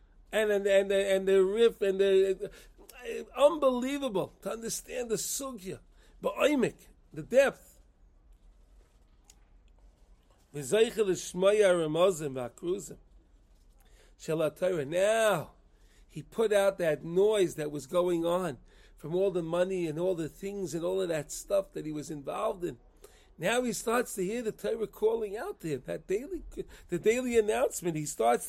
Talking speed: 130 wpm